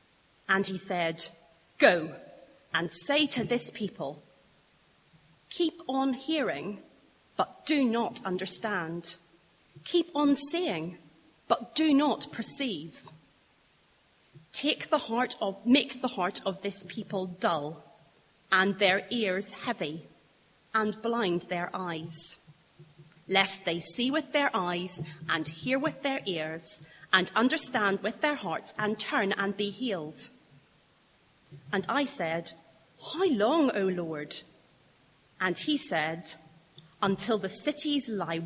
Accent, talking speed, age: British, 120 wpm, 30-49